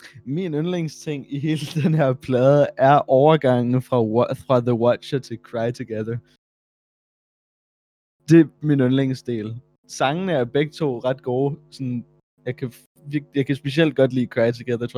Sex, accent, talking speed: male, native, 155 wpm